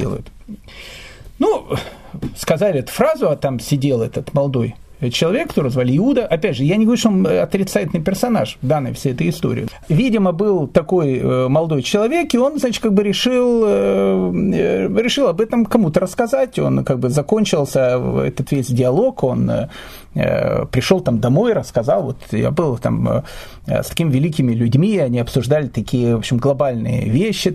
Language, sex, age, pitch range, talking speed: Russian, male, 40-59, 130-205 Hz, 150 wpm